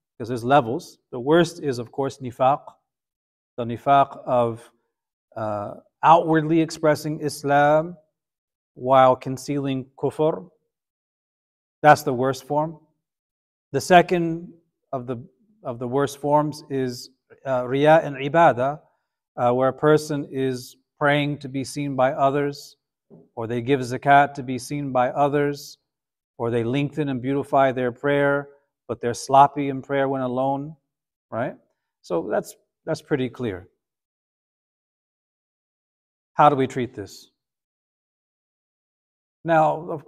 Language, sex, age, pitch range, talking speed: English, male, 40-59, 125-155 Hz, 120 wpm